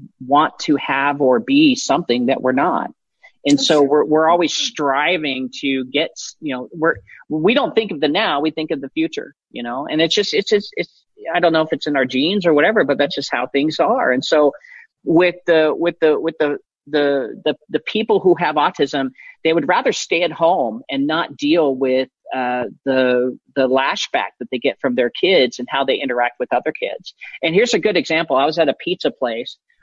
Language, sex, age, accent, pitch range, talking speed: English, male, 40-59, American, 135-170 Hz, 215 wpm